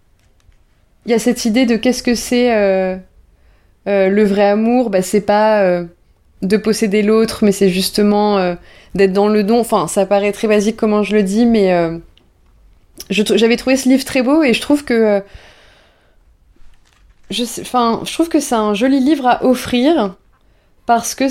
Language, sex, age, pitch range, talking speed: French, female, 20-39, 190-235 Hz, 185 wpm